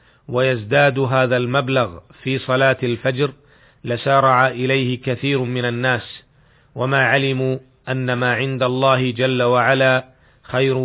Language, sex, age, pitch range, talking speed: Arabic, male, 40-59, 125-135 Hz, 110 wpm